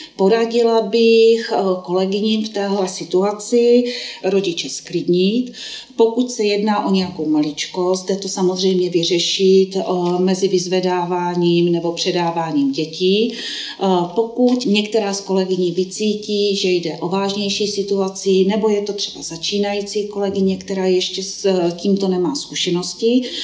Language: Czech